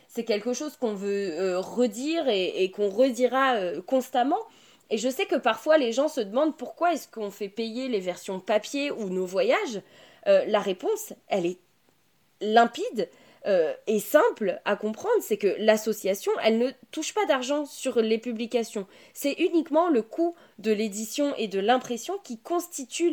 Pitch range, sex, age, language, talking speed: 210-290 Hz, female, 20-39, French, 170 wpm